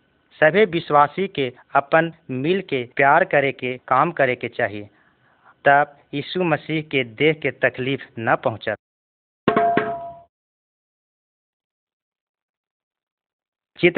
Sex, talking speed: male, 100 wpm